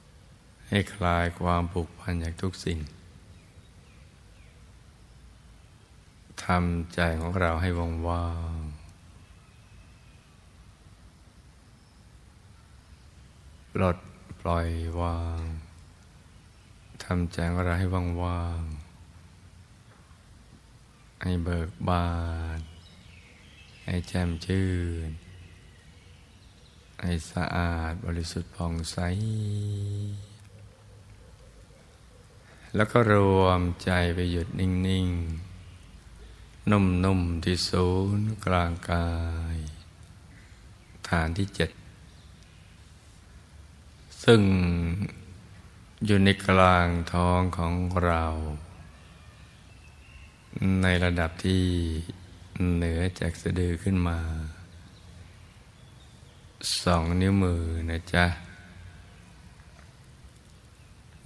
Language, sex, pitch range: Thai, male, 85-95 Hz